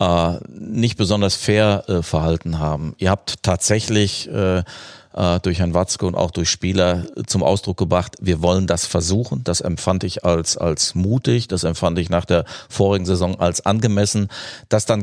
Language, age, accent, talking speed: German, 40-59, German, 165 wpm